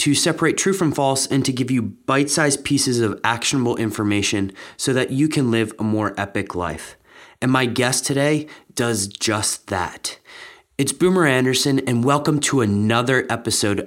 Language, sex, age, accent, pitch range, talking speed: English, male, 30-49, American, 120-165 Hz, 165 wpm